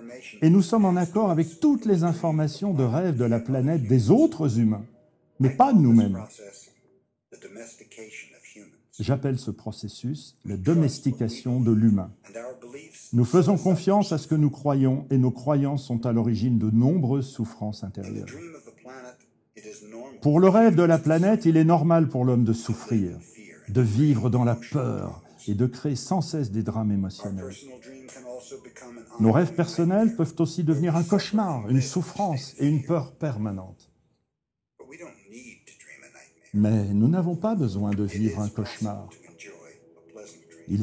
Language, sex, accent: French, male, French